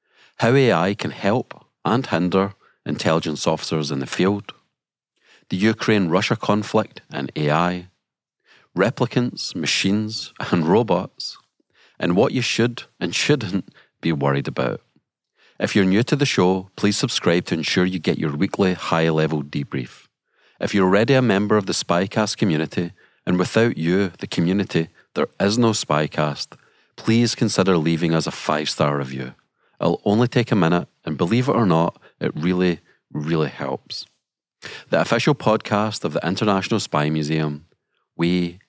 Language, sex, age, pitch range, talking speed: English, male, 40-59, 80-110 Hz, 145 wpm